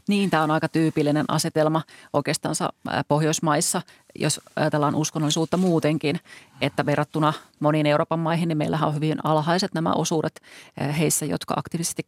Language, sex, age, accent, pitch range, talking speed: Finnish, female, 40-59, native, 150-165 Hz, 125 wpm